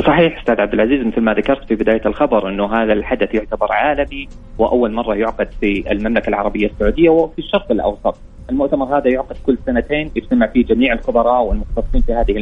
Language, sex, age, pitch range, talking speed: Arabic, male, 30-49, 110-140 Hz, 180 wpm